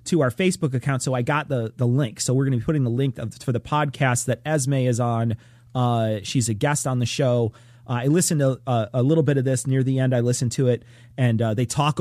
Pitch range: 120-165 Hz